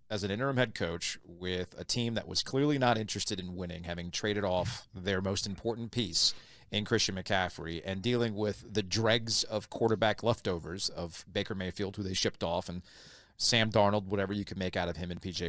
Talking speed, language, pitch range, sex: 200 wpm, English, 95-120 Hz, male